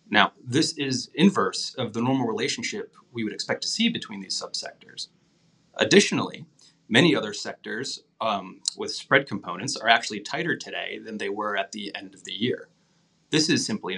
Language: English